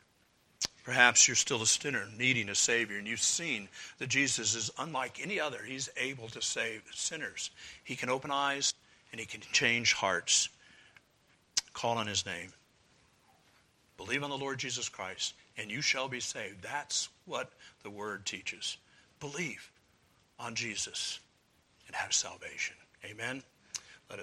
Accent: American